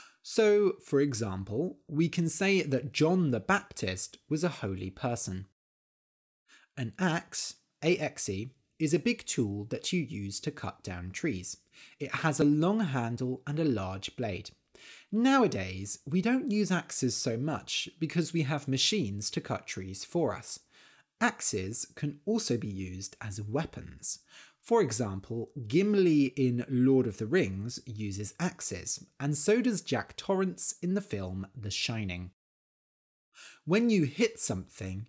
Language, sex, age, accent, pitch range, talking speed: English, male, 30-49, British, 100-170 Hz, 145 wpm